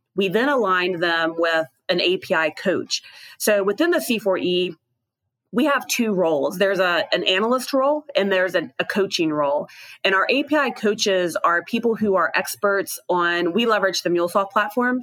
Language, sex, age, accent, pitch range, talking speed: English, female, 30-49, American, 175-220 Hz, 170 wpm